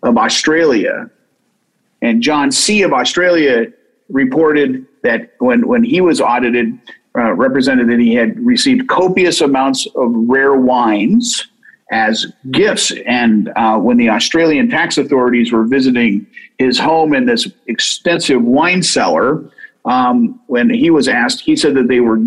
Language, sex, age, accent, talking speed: English, male, 50-69, American, 145 wpm